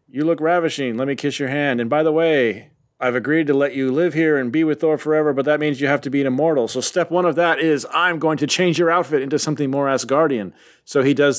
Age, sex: 30-49, male